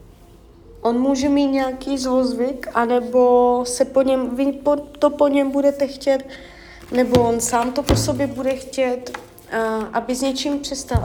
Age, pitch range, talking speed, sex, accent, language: 30-49, 225-265 Hz, 150 wpm, female, native, Czech